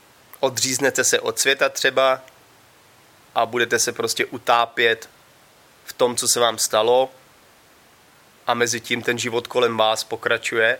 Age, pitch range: 20-39, 110-130 Hz